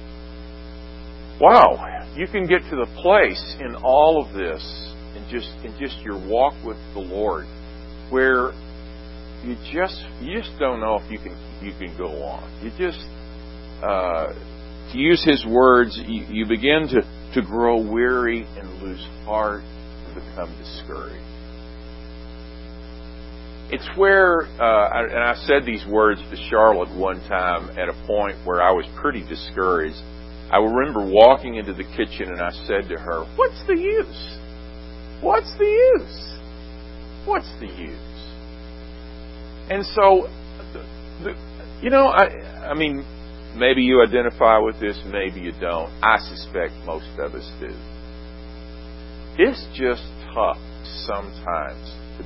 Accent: American